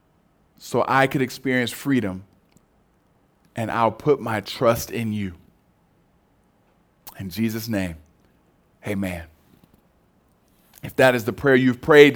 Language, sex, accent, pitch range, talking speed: English, male, American, 115-145 Hz, 115 wpm